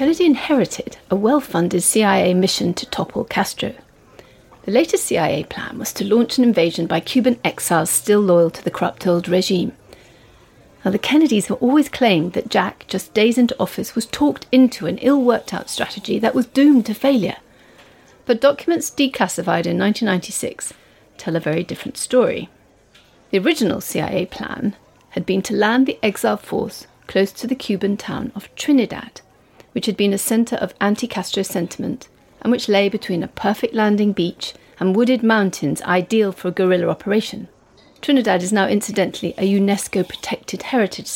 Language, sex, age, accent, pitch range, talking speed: English, female, 40-59, British, 190-245 Hz, 160 wpm